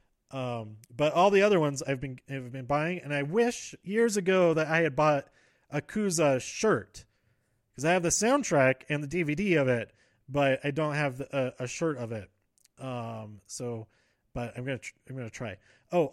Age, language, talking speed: 30-49, English, 200 wpm